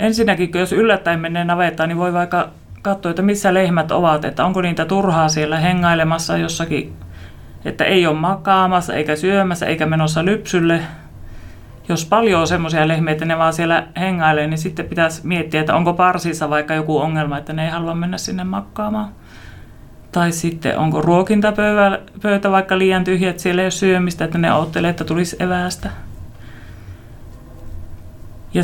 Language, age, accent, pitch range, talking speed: Finnish, 30-49, native, 150-185 Hz, 150 wpm